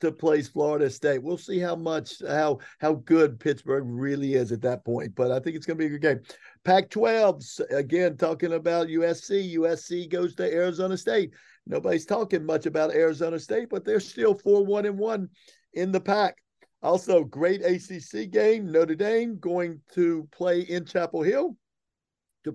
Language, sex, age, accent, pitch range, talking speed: English, male, 50-69, American, 160-200 Hz, 175 wpm